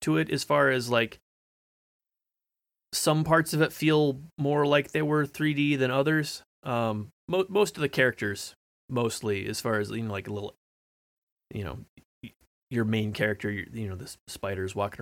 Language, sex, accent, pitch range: English, male, American, 95-135 Hz